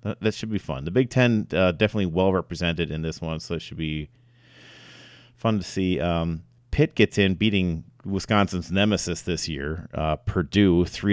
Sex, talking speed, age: male, 165 wpm, 30-49